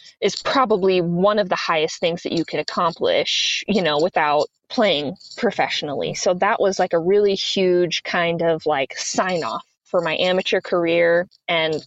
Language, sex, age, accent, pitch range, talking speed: English, female, 20-39, American, 170-210 Hz, 165 wpm